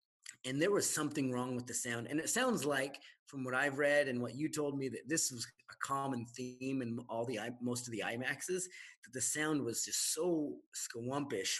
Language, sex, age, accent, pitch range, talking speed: English, male, 30-49, American, 115-150 Hz, 210 wpm